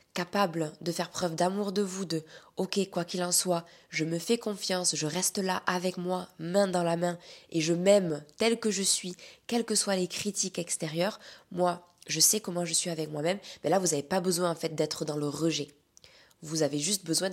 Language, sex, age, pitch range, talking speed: French, female, 20-39, 160-195 Hz, 220 wpm